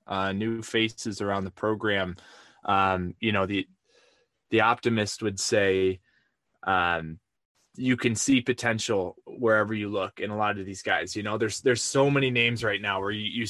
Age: 20-39